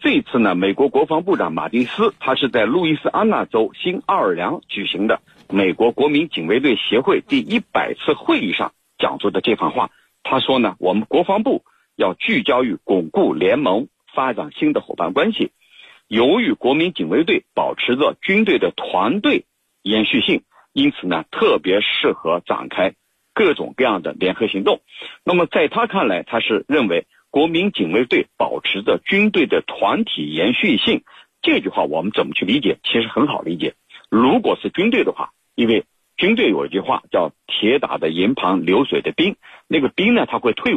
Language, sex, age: Chinese, male, 50-69